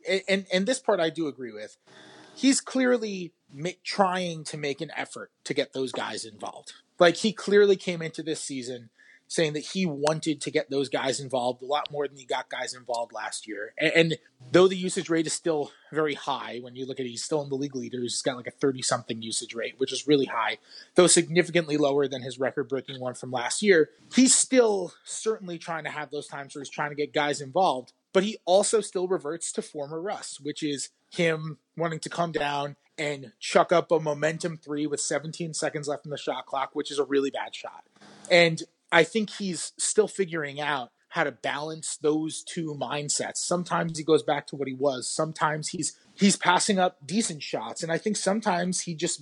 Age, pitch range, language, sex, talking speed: 20-39, 140-185 Hz, English, male, 210 wpm